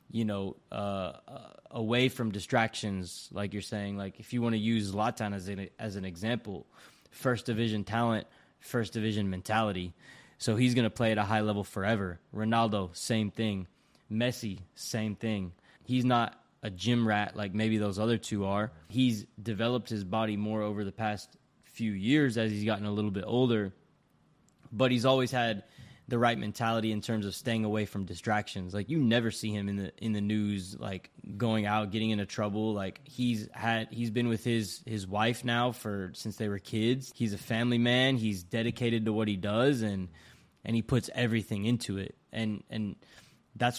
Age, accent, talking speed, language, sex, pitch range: 20-39, American, 185 wpm, English, male, 105-120 Hz